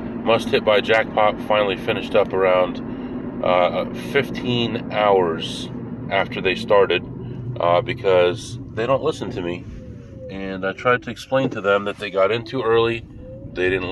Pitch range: 95-120 Hz